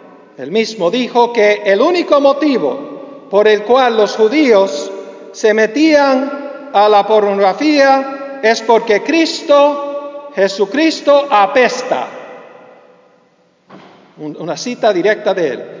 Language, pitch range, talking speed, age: English, 205-295 Hz, 105 wpm, 50-69